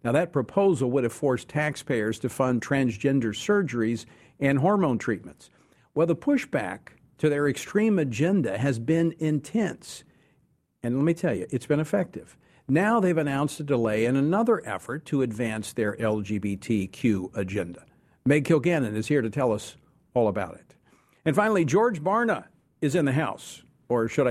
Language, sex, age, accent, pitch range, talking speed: English, male, 50-69, American, 120-165 Hz, 160 wpm